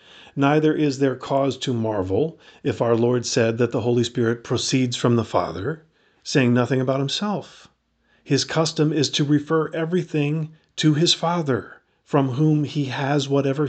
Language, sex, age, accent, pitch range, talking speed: English, male, 40-59, American, 120-145 Hz, 160 wpm